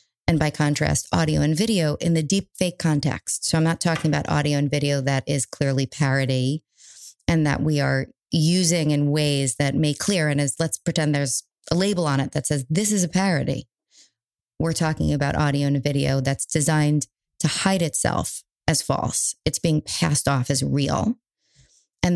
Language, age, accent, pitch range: English, 30-49, American, 140-175 Hz